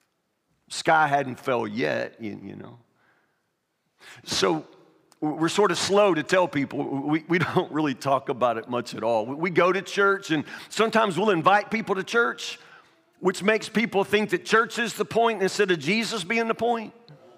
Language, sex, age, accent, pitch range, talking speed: English, male, 50-69, American, 175-220 Hz, 175 wpm